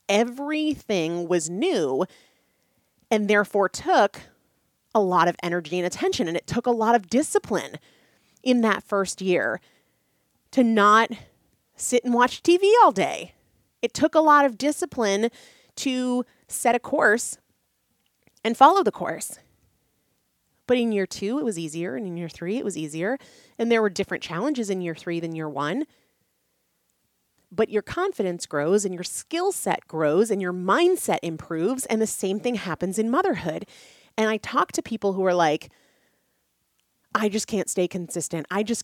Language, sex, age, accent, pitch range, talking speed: English, female, 30-49, American, 185-250 Hz, 160 wpm